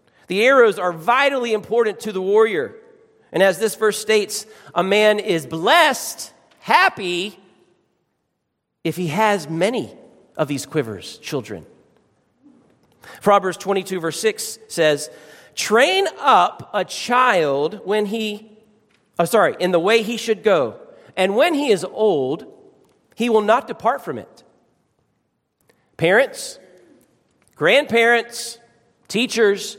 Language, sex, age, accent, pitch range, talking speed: English, male, 40-59, American, 175-235 Hz, 120 wpm